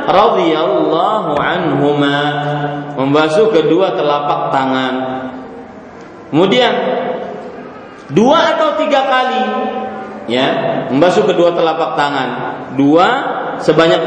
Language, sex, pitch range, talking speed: Malay, male, 150-230 Hz, 75 wpm